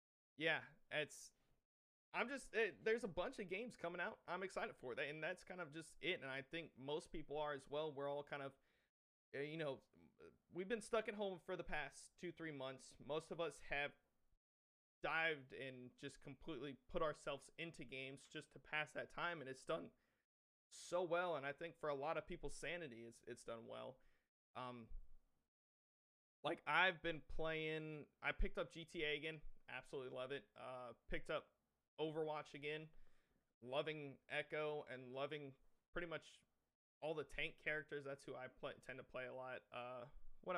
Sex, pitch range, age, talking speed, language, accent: male, 130-170 Hz, 30-49, 175 wpm, English, American